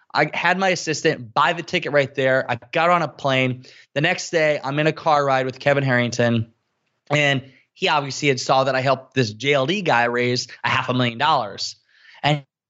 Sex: male